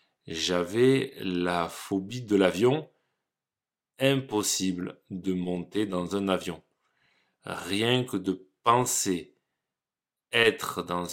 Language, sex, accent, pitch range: French, male, French, 90-130 Hz